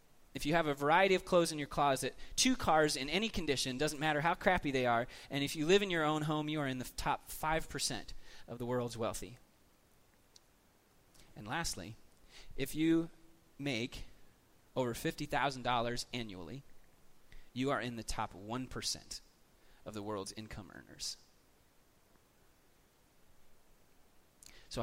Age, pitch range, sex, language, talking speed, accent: 30-49, 110-140 Hz, male, English, 145 wpm, American